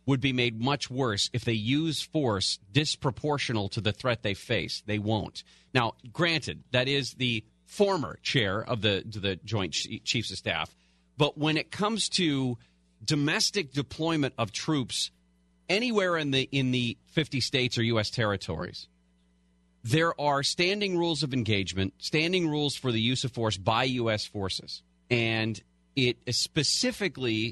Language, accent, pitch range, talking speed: English, American, 100-140 Hz, 155 wpm